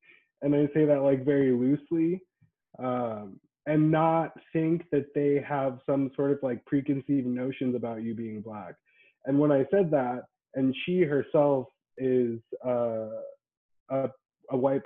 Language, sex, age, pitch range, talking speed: English, male, 20-39, 120-145 Hz, 150 wpm